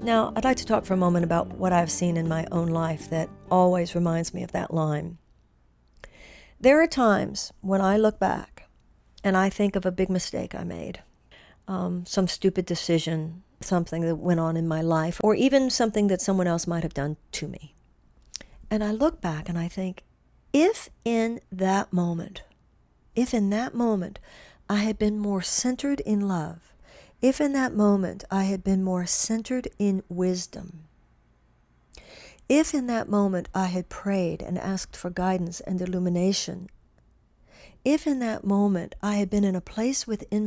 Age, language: 50-69, English